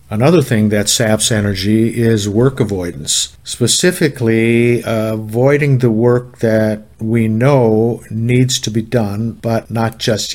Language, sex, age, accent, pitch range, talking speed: English, male, 50-69, American, 110-130 Hz, 135 wpm